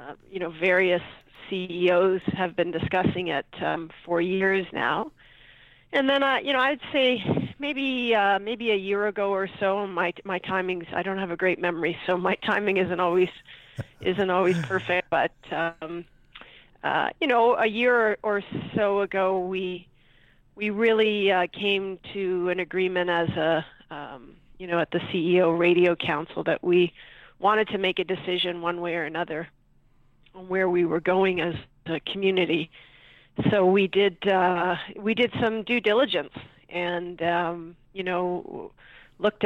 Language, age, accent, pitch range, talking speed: English, 40-59, American, 170-200 Hz, 165 wpm